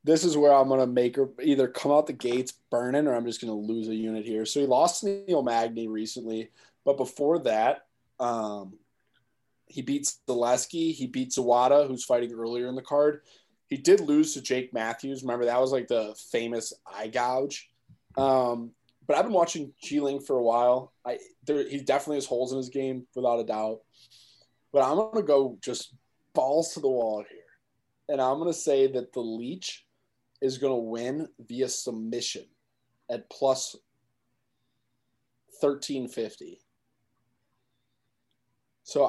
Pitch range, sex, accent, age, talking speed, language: 120-140 Hz, male, American, 20-39, 170 wpm, English